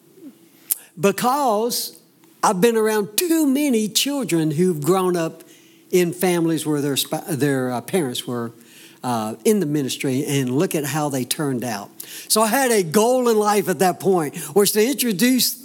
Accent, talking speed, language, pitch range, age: American, 155 wpm, English, 150-215 Hz, 60-79